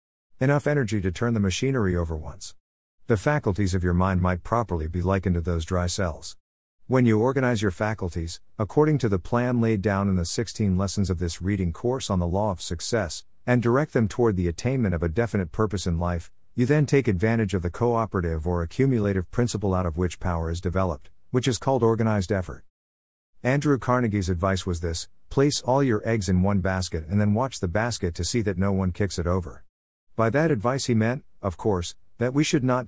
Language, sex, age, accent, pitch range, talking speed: English, male, 50-69, American, 90-115 Hz, 210 wpm